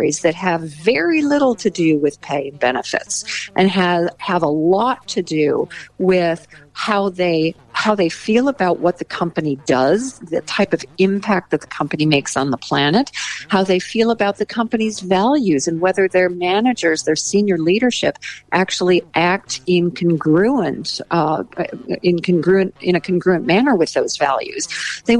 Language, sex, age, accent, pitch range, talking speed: English, female, 50-69, American, 155-200 Hz, 150 wpm